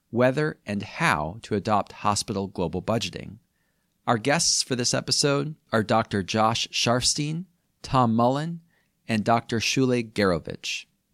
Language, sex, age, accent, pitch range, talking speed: English, male, 40-59, American, 95-130 Hz, 125 wpm